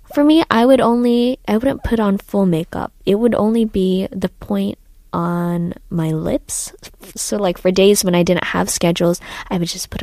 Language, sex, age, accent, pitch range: Korean, female, 20-39, American, 180-220 Hz